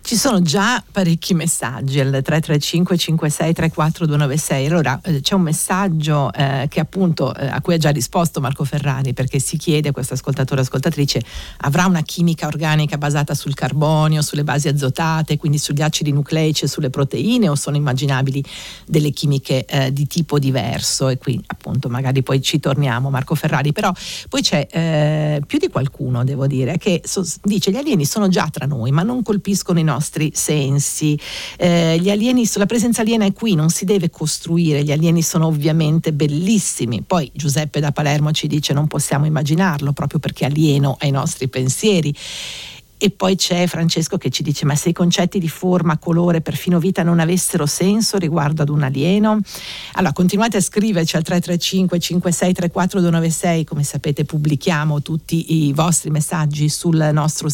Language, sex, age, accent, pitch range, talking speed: Italian, female, 50-69, native, 145-175 Hz, 170 wpm